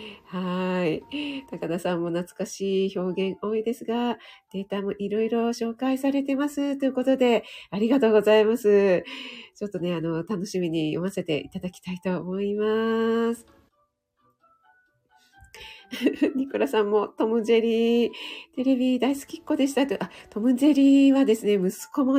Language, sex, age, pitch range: Japanese, female, 40-59, 190-270 Hz